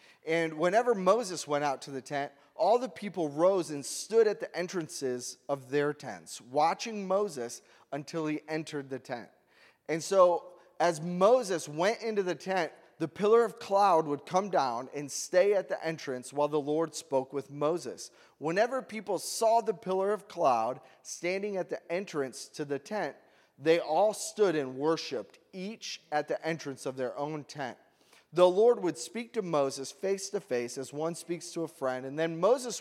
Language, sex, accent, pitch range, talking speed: English, male, American, 150-195 Hz, 180 wpm